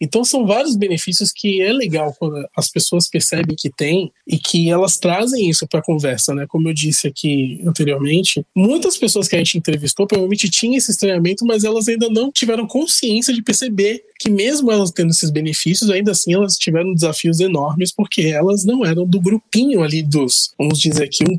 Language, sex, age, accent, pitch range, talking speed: Portuguese, male, 20-39, Brazilian, 150-195 Hz, 190 wpm